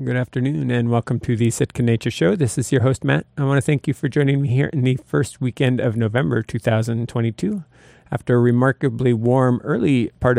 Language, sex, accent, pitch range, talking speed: English, male, American, 115-135 Hz, 210 wpm